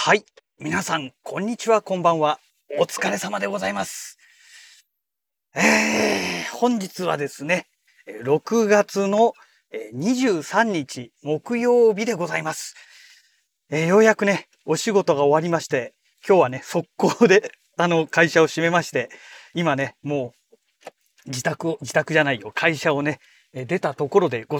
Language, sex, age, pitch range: Japanese, male, 40-59, 140-205 Hz